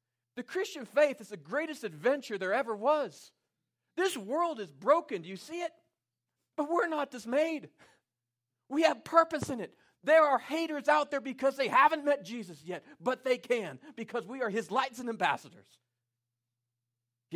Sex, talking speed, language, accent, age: male, 170 wpm, English, American, 40-59